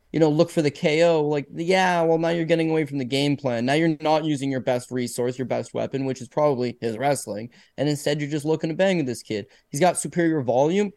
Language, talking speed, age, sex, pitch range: English, 250 wpm, 20-39, male, 140-175 Hz